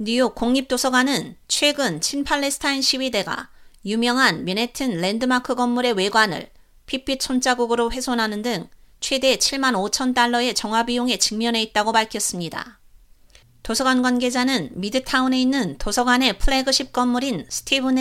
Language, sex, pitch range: Korean, female, 220-260 Hz